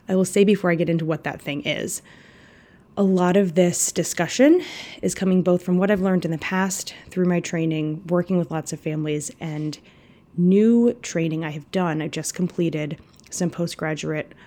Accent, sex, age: American, female, 20-39